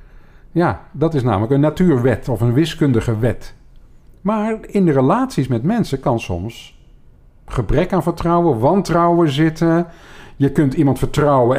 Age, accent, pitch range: 50-69, Dutch, 120-175 Hz